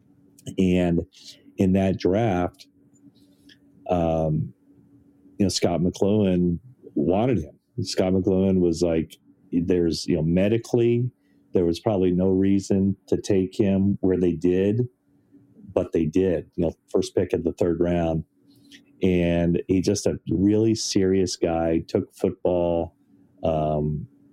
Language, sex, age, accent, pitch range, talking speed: English, male, 40-59, American, 80-95 Hz, 125 wpm